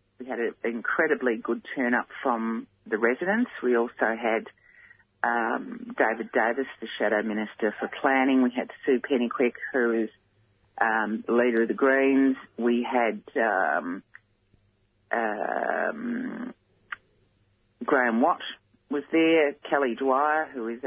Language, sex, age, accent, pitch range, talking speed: English, female, 40-59, Australian, 120-150 Hz, 125 wpm